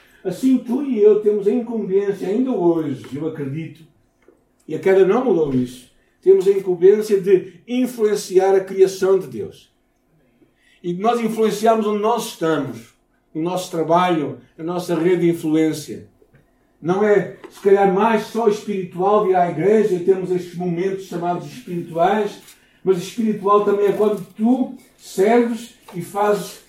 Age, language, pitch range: 60-79, Portuguese, 160-205 Hz